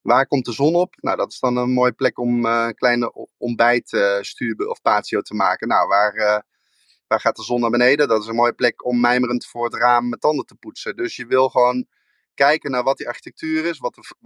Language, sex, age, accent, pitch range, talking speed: Dutch, male, 20-39, Dutch, 115-135 Hz, 240 wpm